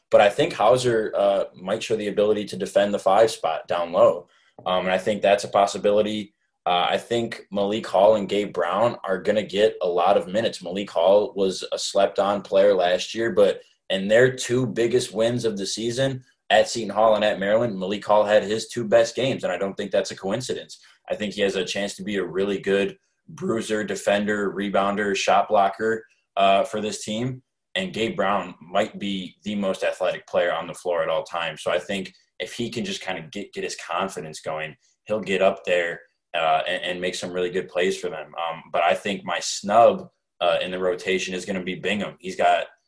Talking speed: 220 wpm